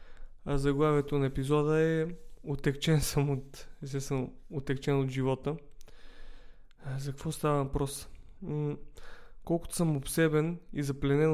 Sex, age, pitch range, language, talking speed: male, 20-39, 130-150 Hz, Bulgarian, 115 wpm